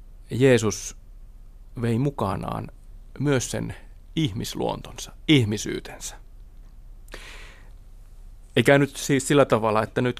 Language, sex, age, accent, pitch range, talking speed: Finnish, male, 30-49, native, 100-125 Hz, 80 wpm